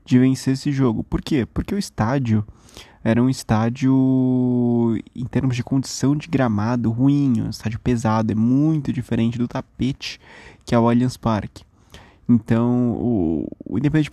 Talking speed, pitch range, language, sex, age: 150 wpm, 115-135 Hz, Portuguese, male, 20-39